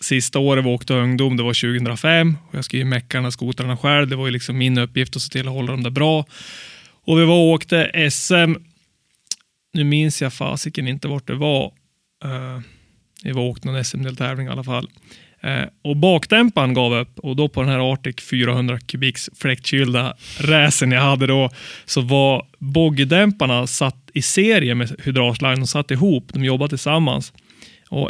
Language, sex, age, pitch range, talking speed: Swedish, male, 30-49, 130-155 Hz, 180 wpm